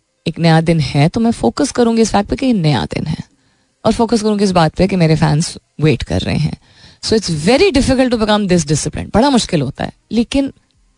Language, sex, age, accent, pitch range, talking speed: Hindi, female, 30-49, native, 155-230 Hz, 220 wpm